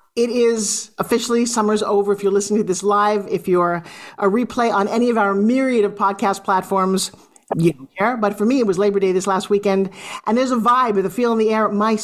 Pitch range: 195-245 Hz